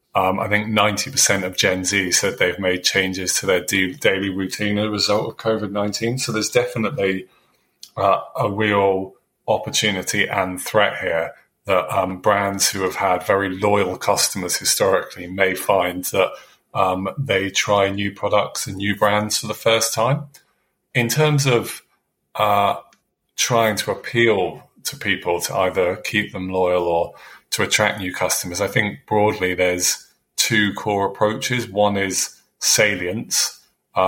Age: 30-49